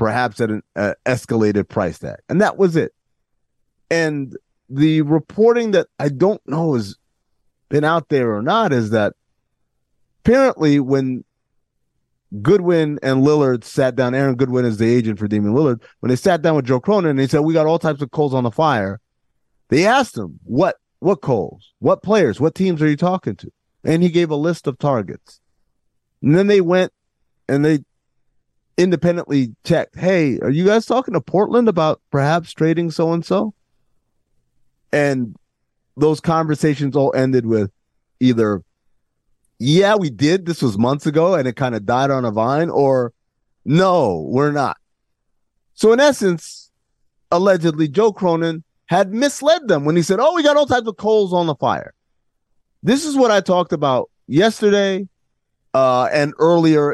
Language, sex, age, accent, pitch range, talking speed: English, male, 30-49, American, 130-180 Hz, 165 wpm